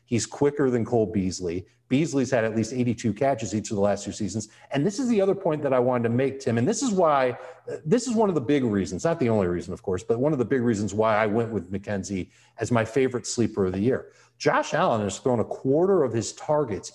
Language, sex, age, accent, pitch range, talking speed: English, male, 40-59, American, 115-160 Hz, 260 wpm